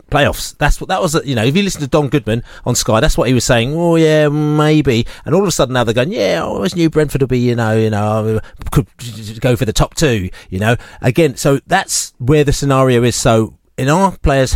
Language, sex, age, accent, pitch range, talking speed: English, male, 30-49, British, 105-140 Hz, 250 wpm